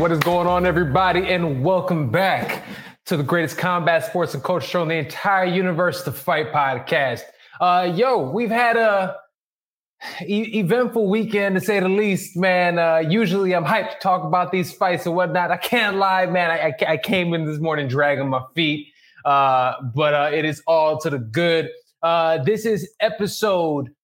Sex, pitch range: male, 160-195 Hz